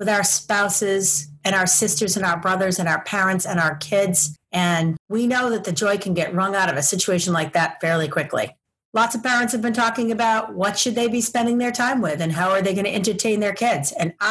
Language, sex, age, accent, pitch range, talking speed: English, female, 40-59, American, 170-220 Hz, 240 wpm